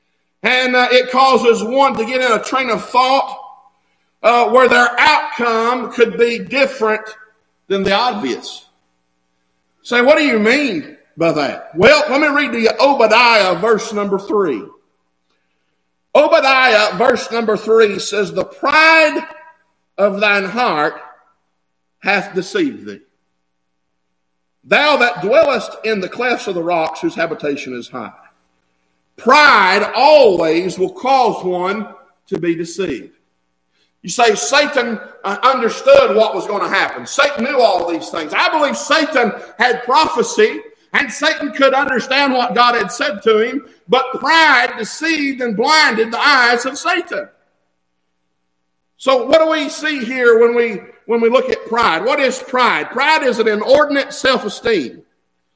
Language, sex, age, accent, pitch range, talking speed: English, male, 50-69, American, 170-270 Hz, 145 wpm